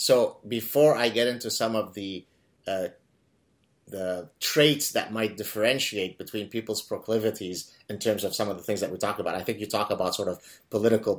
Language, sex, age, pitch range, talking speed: English, male, 30-49, 100-125 Hz, 195 wpm